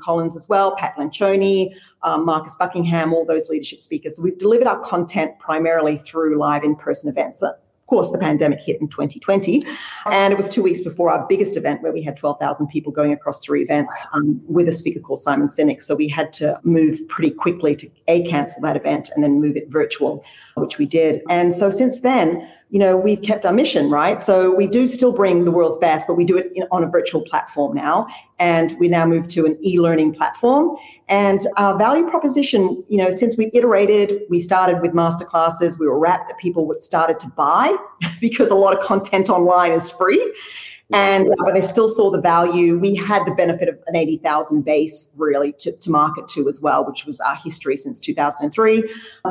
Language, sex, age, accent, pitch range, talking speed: English, female, 40-59, Australian, 160-210 Hz, 210 wpm